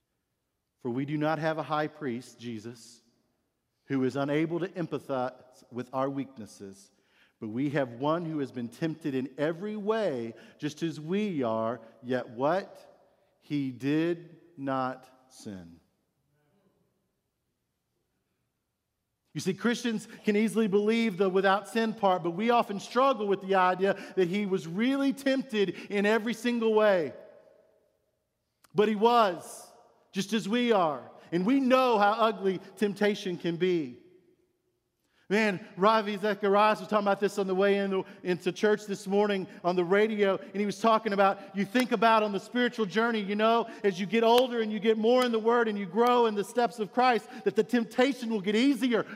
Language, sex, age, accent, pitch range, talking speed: English, male, 50-69, American, 150-225 Hz, 165 wpm